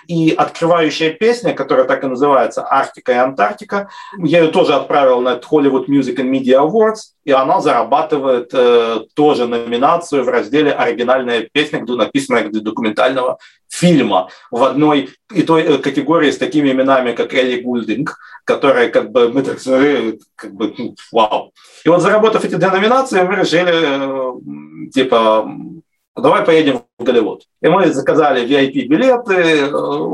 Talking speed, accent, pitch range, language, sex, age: 145 wpm, native, 125-170 Hz, Russian, male, 40-59